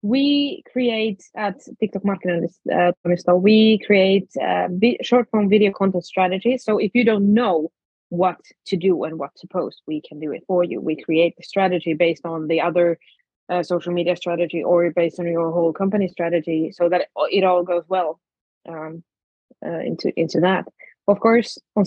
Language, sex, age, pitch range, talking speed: English, female, 20-39, 175-205 Hz, 180 wpm